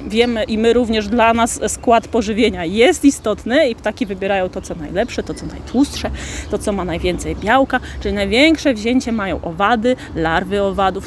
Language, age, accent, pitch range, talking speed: Polish, 30-49, native, 210-275 Hz, 170 wpm